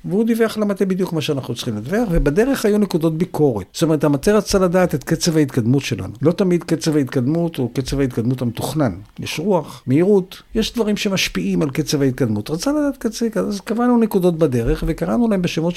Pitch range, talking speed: 130-185 Hz, 185 wpm